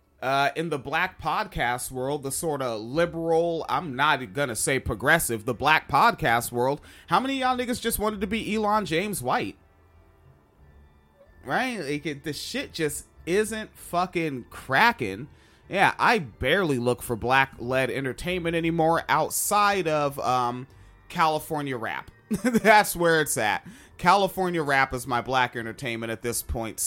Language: English